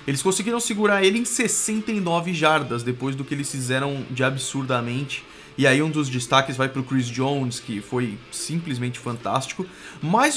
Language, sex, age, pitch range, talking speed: Portuguese, male, 20-39, 140-210 Hz, 160 wpm